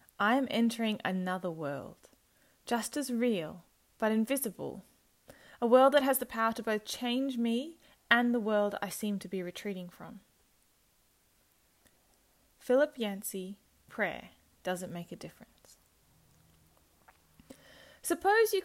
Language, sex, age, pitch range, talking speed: English, female, 20-39, 210-275 Hz, 120 wpm